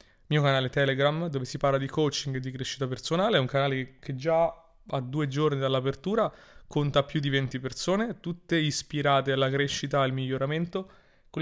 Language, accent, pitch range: Italian, native, 135-150 Hz